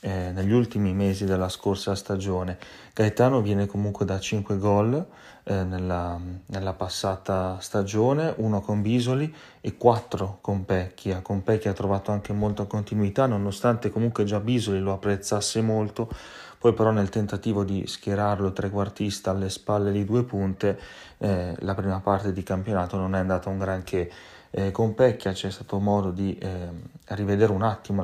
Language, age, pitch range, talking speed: Italian, 30-49, 95-110 Hz, 155 wpm